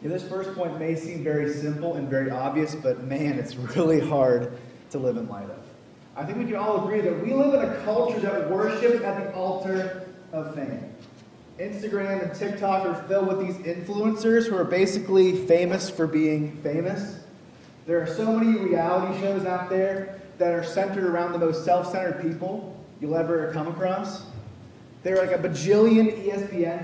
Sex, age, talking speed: male, 30-49, 180 wpm